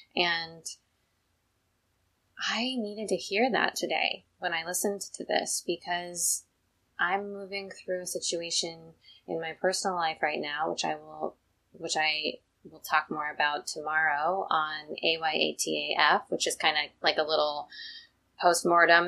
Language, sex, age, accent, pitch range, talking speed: English, female, 20-39, American, 155-185 Hz, 140 wpm